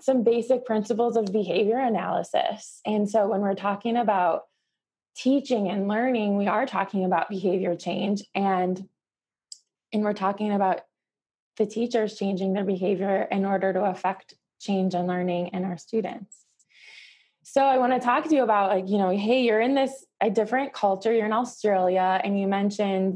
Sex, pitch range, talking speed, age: female, 185-225 Hz, 170 wpm, 20-39